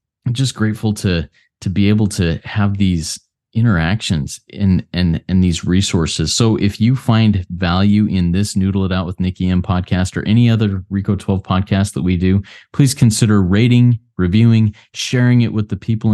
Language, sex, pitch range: English, male, 90-110 Hz